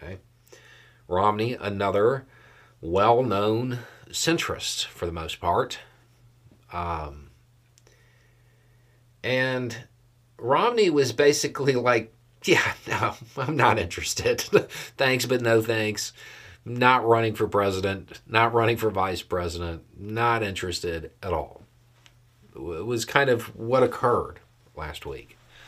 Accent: American